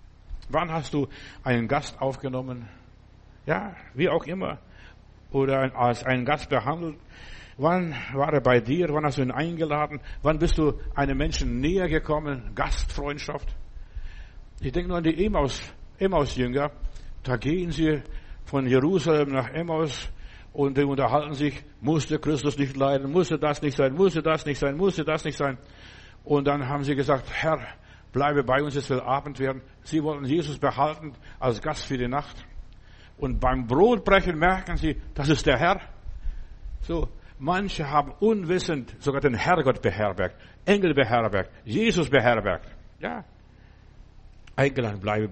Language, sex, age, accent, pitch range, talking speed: German, male, 60-79, German, 125-155 Hz, 150 wpm